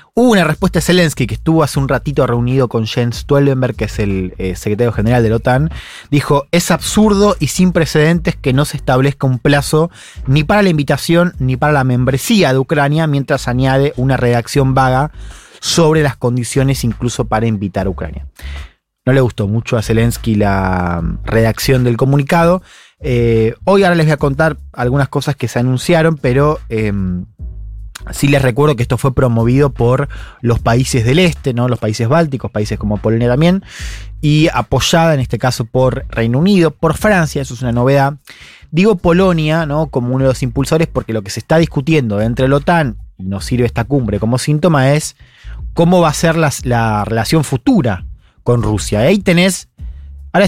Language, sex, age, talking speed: Spanish, male, 20-39, 185 wpm